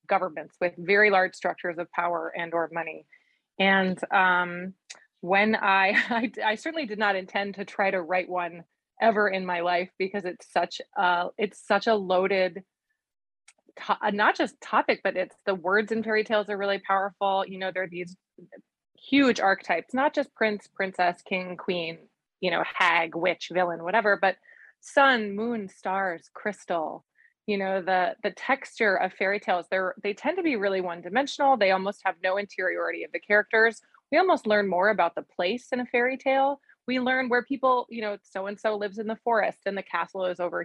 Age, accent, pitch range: 20-39, American, 185-225 Hz